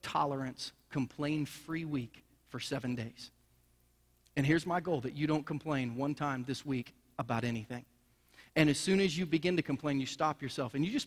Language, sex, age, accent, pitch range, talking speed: English, male, 40-59, American, 135-175 Hz, 185 wpm